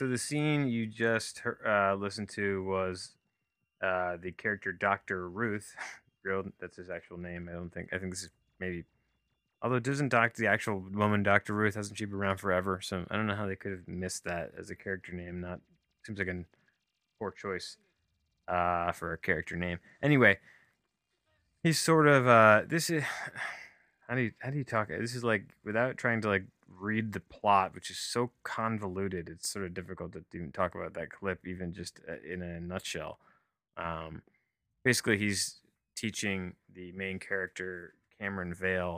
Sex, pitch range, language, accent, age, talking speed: male, 90-110 Hz, English, American, 20-39, 180 wpm